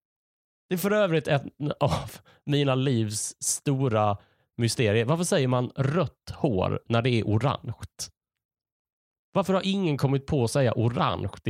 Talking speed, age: 140 wpm, 30-49